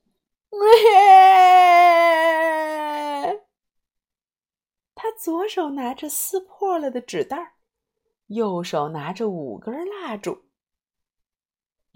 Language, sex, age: Chinese, female, 30-49